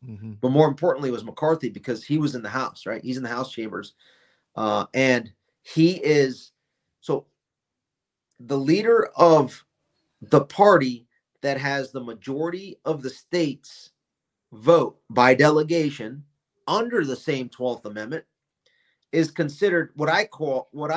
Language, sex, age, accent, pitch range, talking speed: English, male, 40-59, American, 130-170 Hz, 140 wpm